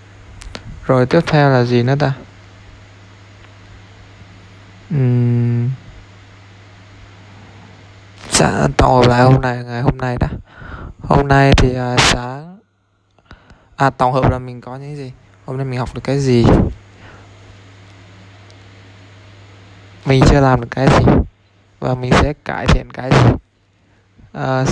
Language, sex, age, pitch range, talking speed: Vietnamese, male, 20-39, 100-130 Hz, 125 wpm